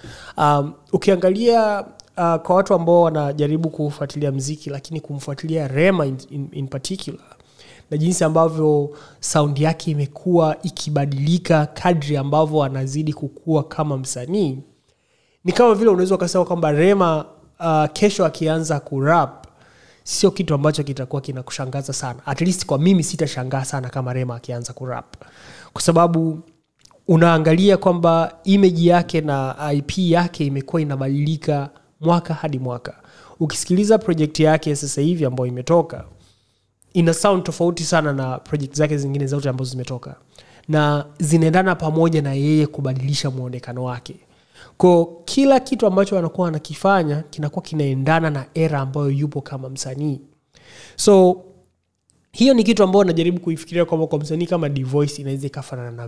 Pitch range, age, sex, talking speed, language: 140-170 Hz, 30-49, male, 135 wpm, Swahili